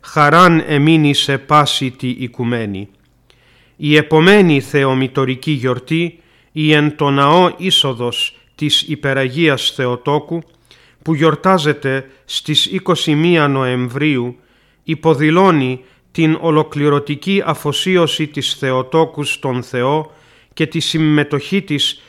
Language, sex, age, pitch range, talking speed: Greek, male, 40-59, 135-160 Hz, 85 wpm